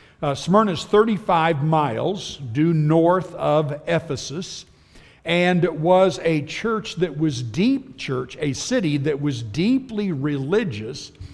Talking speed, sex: 125 wpm, male